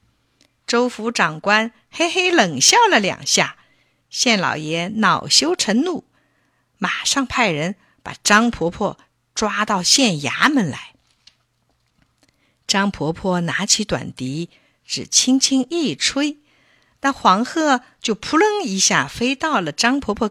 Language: Chinese